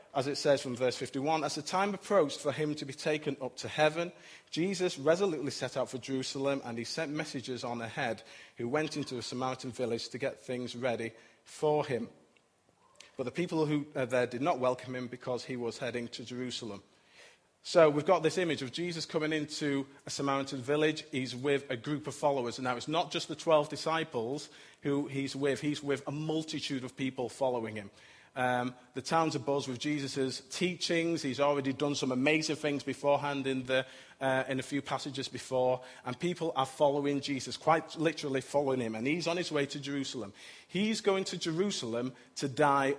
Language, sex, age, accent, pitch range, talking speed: English, male, 40-59, British, 125-150 Hz, 195 wpm